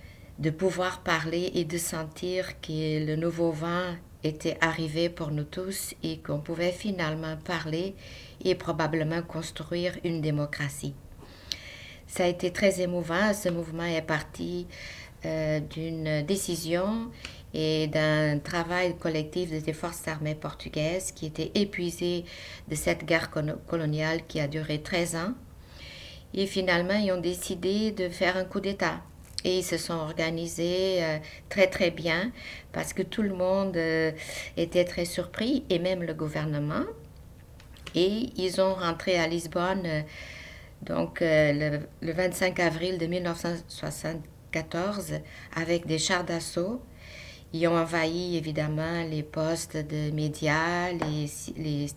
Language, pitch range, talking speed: French, 155-180 Hz, 135 wpm